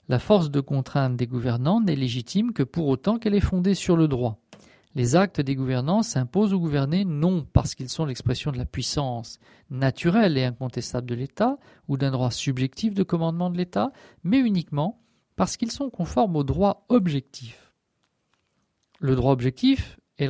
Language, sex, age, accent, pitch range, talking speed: French, male, 50-69, French, 130-175 Hz, 170 wpm